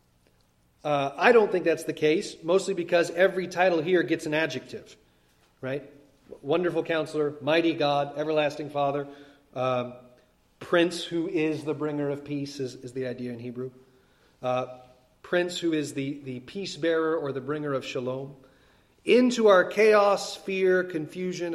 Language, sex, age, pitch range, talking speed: English, male, 30-49, 130-180 Hz, 150 wpm